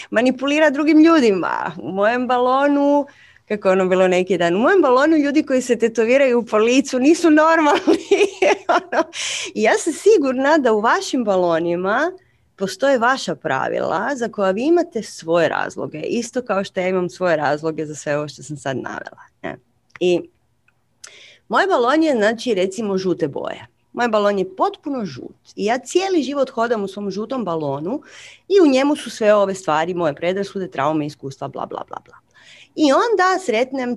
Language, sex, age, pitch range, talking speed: Croatian, female, 30-49, 195-305 Hz, 165 wpm